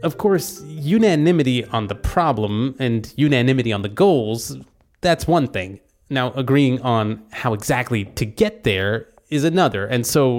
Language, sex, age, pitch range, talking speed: English, male, 30-49, 115-145 Hz, 150 wpm